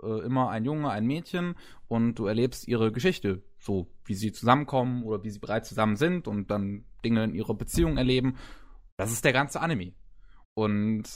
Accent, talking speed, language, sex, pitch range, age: German, 175 wpm, German, male, 110-135 Hz, 20-39